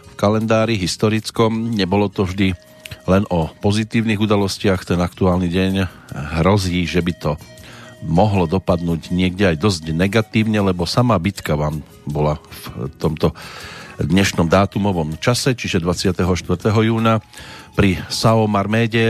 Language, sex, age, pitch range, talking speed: Slovak, male, 40-59, 90-110 Hz, 125 wpm